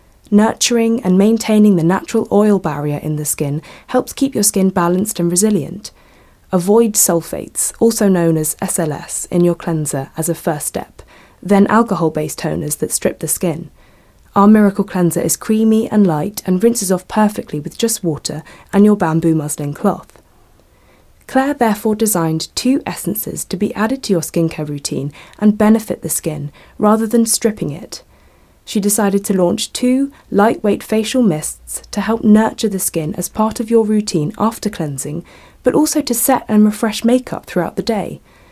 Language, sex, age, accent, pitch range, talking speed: English, female, 20-39, British, 170-225 Hz, 165 wpm